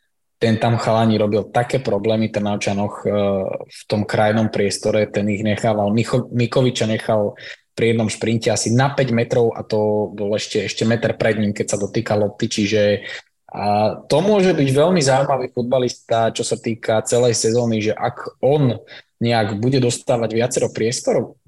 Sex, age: male, 20-39